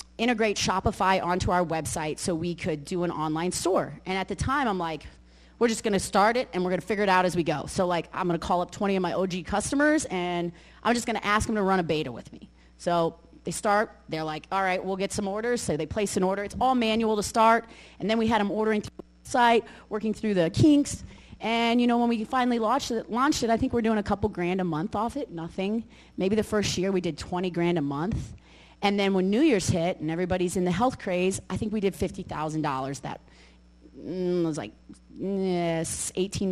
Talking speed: 235 wpm